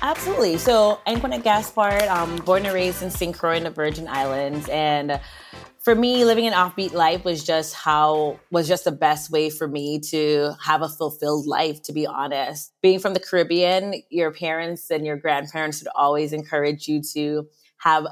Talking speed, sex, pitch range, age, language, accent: 190 wpm, female, 150-185 Hz, 20-39, English, American